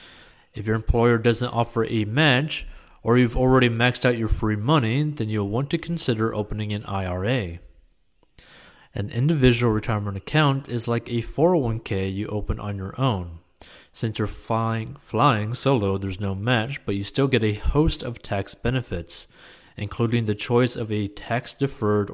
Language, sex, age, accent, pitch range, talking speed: English, male, 30-49, American, 100-125 Hz, 160 wpm